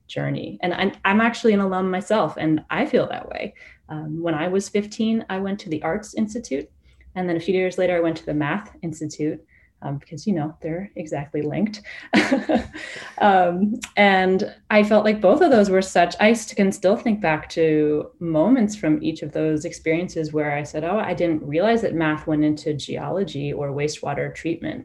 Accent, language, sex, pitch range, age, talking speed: American, English, female, 155-195 Hz, 30-49, 195 wpm